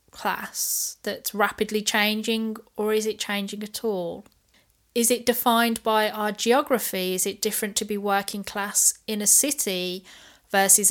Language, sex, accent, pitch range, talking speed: English, female, British, 190-225 Hz, 150 wpm